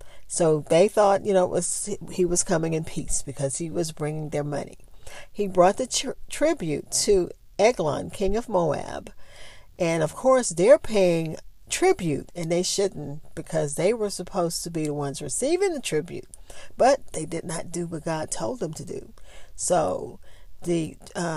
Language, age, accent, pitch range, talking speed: English, 50-69, American, 165-215 Hz, 170 wpm